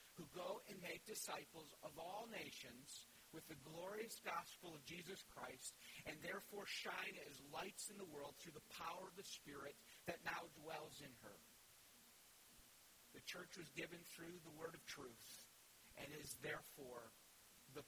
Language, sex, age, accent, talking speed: English, male, 50-69, American, 160 wpm